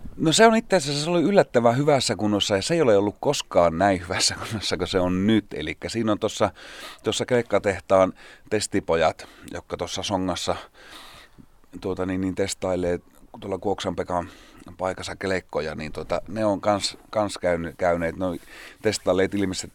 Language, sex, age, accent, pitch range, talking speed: Finnish, male, 30-49, native, 85-105 Hz, 150 wpm